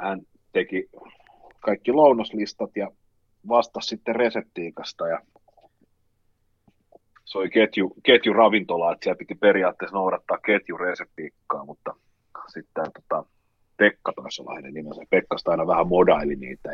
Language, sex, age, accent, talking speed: Finnish, male, 30-49, native, 110 wpm